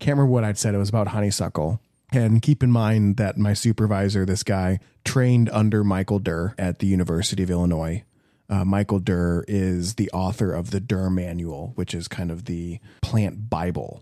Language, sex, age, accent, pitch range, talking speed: English, male, 30-49, American, 95-115 Hz, 190 wpm